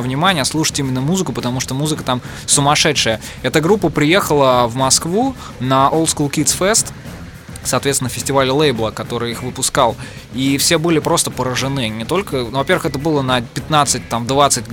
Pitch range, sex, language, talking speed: 130-160 Hz, male, Russian, 150 wpm